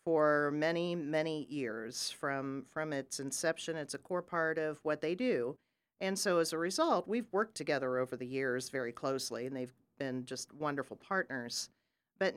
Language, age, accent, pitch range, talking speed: English, 40-59, American, 135-170 Hz, 175 wpm